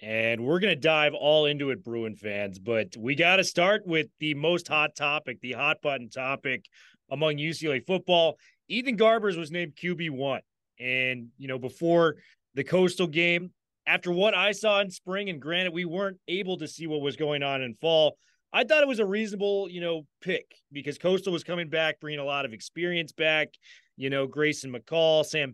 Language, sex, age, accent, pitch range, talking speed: English, male, 30-49, American, 145-185 Hz, 195 wpm